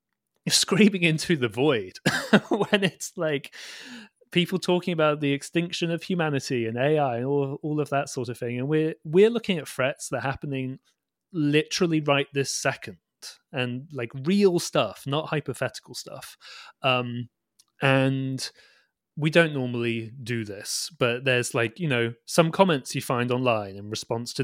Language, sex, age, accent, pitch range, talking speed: English, male, 30-49, British, 120-155 Hz, 155 wpm